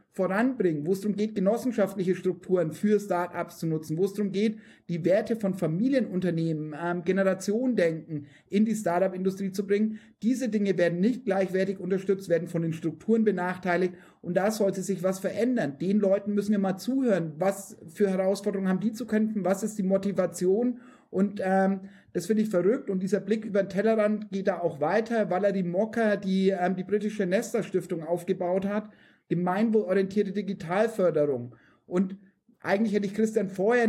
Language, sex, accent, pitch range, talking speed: German, male, German, 175-210 Hz, 170 wpm